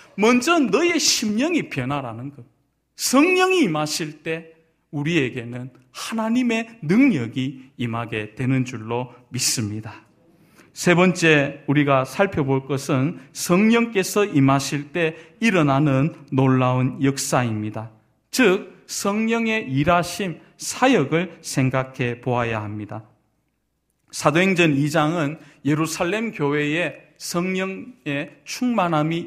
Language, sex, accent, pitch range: Korean, male, native, 130-185 Hz